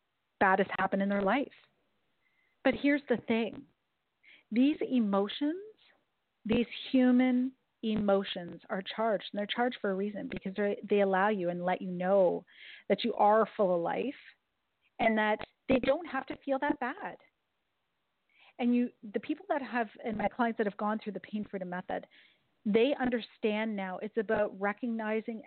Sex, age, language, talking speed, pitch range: female, 40-59, English, 165 wpm, 200-255 Hz